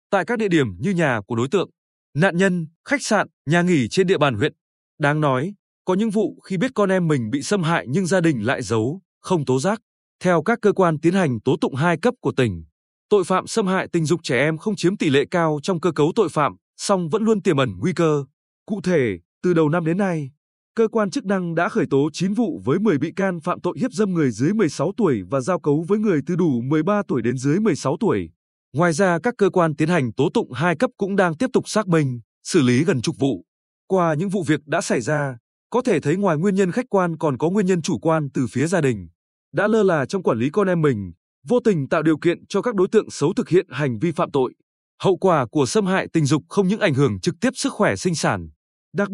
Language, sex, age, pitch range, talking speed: Vietnamese, male, 20-39, 145-195 Hz, 255 wpm